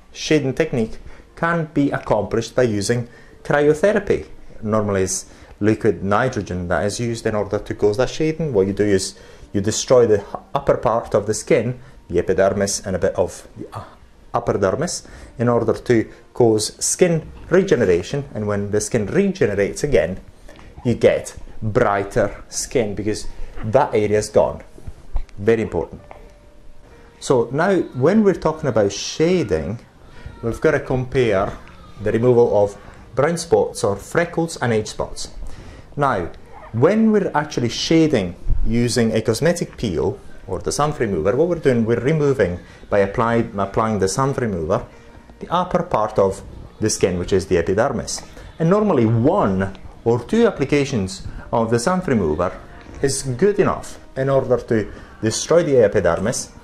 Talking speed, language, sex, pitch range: 145 wpm, English, male, 100-150 Hz